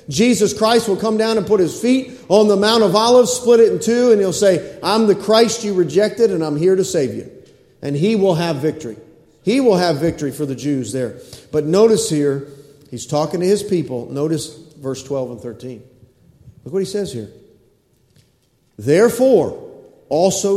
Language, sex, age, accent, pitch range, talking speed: English, male, 40-59, American, 145-225 Hz, 190 wpm